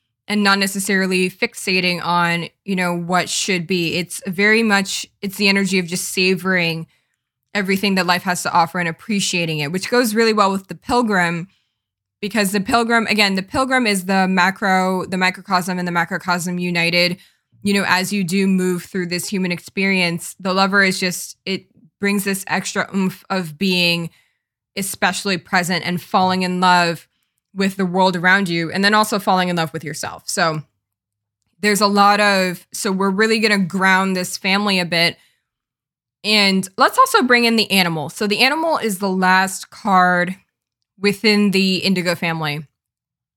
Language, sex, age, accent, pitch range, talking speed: English, female, 20-39, American, 175-200 Hz, 170 wpm